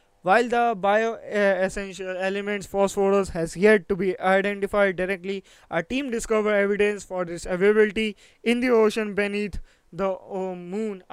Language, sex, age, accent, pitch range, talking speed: English, male, 20-39, Indian, 190-215 Hz, 135 wpm